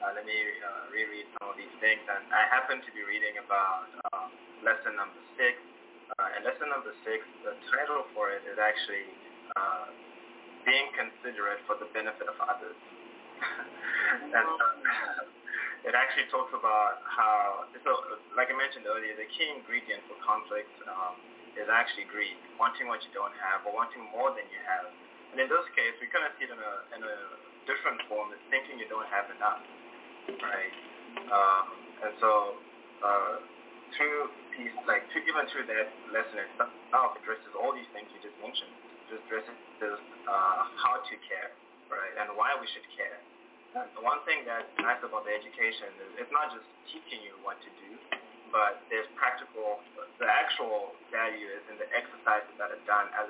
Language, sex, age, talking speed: English, male, 20-39, 180 wpm